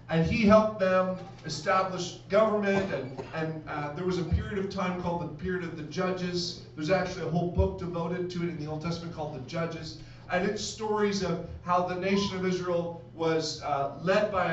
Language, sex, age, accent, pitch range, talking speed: English, male, 40-59, American, 160-195 Hz, 200 wpm